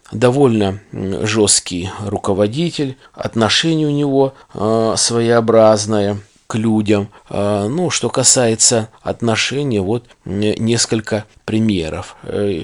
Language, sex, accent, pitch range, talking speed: Russian, male, native, 105-125 Hz, 75 wpm